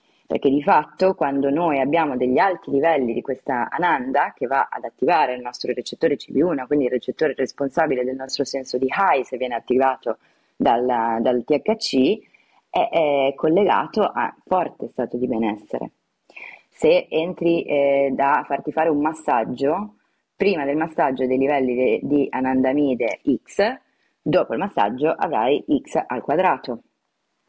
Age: 30-49